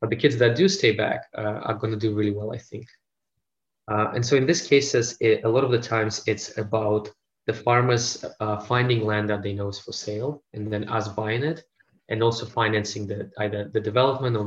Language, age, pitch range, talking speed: English, 20-39, 105-115 Hz, 215 wpm